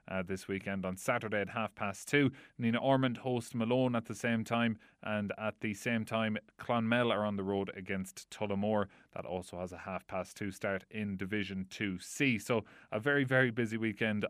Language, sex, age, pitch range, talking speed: English, male, 30-49, 100-120 Hz, 195 wpm